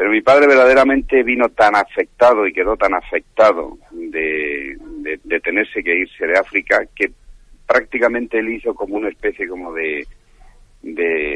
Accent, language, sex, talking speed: Spanish, Spanish, male, 155 wpm